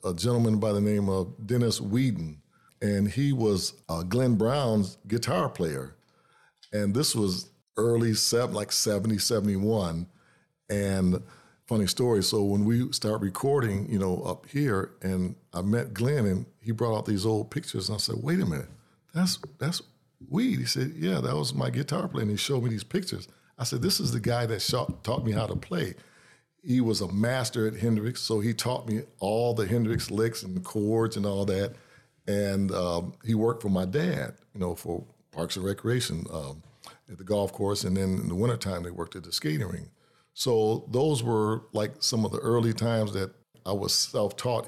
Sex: male